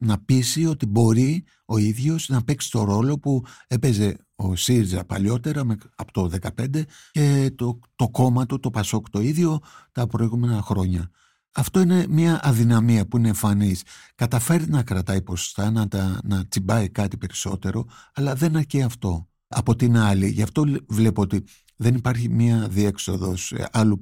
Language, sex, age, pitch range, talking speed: Greek, male, 60-79, 95-125 Hz, 155 wpm